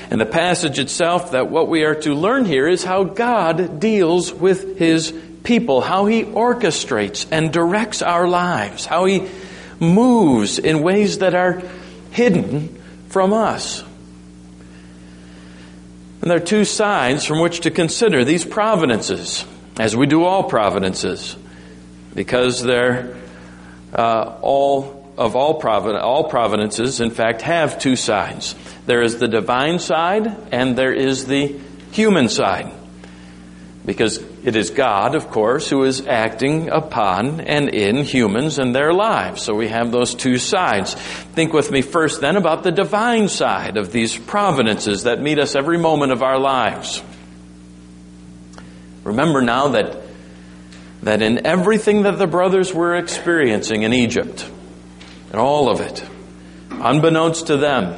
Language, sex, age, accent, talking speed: English, male, 50-69, American, 140 wpm